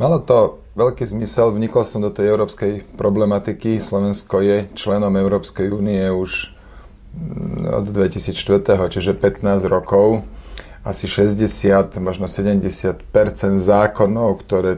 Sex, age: male, 30-49